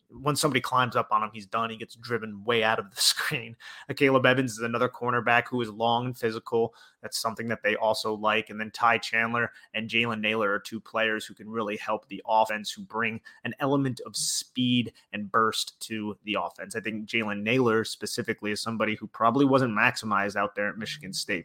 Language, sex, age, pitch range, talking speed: English, male, 30-49, 110-130 Hz, 210 wpm